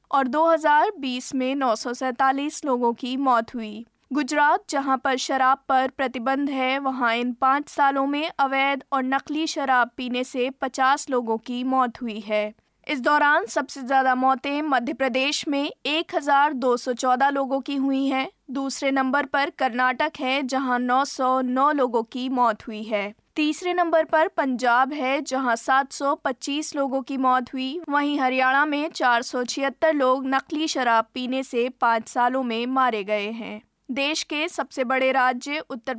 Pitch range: 250-285 Hz